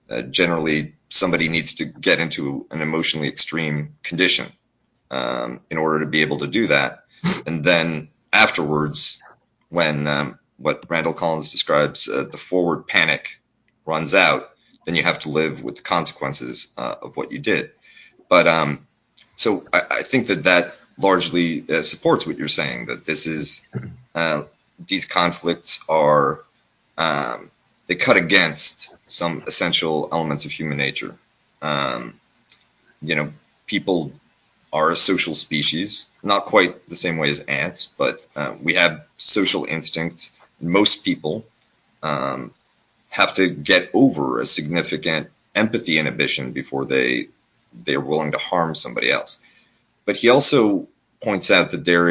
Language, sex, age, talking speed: English, male, 30-49, 145 wpm